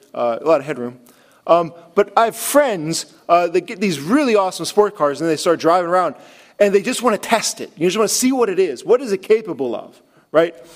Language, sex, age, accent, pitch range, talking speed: English, male, 40-59, American, 170-235 Hz, 245 wpm